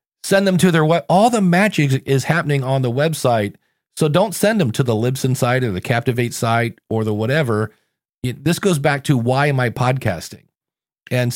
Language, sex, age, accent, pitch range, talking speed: English, male, 40-59, American, 115-155 Hz, 195 wpm